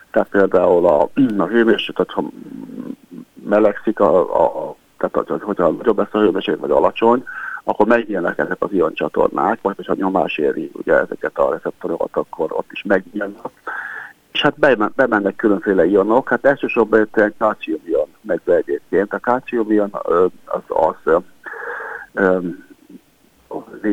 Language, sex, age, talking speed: Hungarian, male, 50-69, 135 wpm